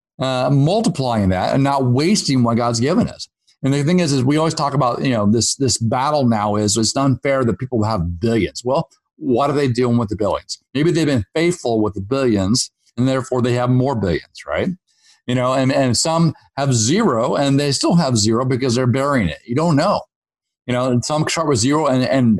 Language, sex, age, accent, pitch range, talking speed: English, male, 50-69, American, 110-135 Hz, 220 wpm